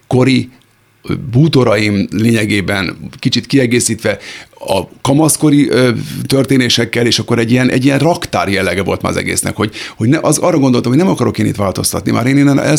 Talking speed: 170 wpm